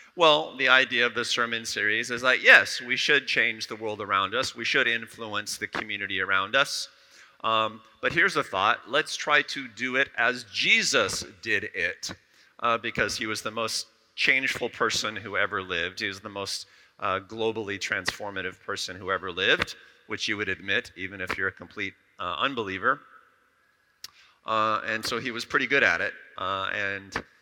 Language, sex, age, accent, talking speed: English, male, 40-59, American, 180 wpm